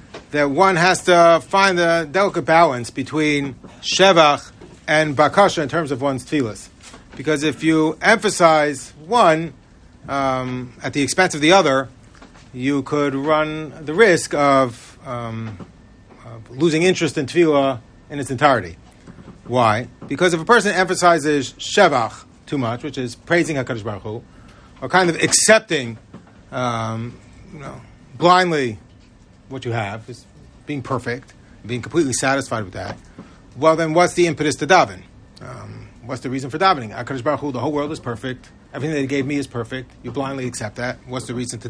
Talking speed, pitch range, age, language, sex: 165 wpm, 120-160 Hz, 40-59, English, male